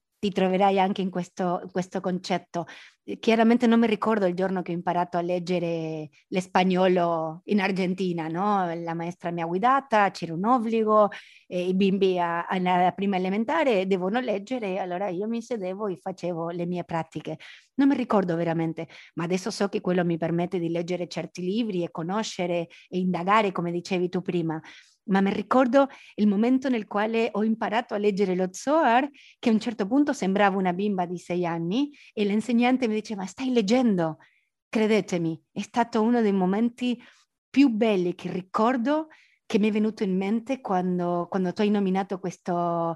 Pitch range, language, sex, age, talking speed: 180-225 Hz, Italian, female, 30-49, 170 wpm